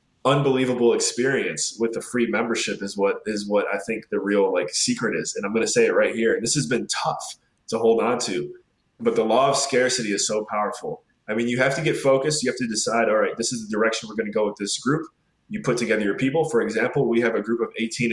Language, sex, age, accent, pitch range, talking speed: English, male, 20-39, American, 115-170 Hz, 260 wpm